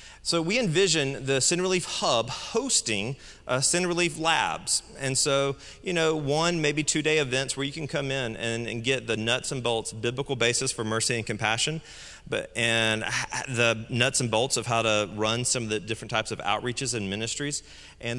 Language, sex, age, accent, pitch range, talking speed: English, male, 30-49, American, 110-140 Hz, 190 wpm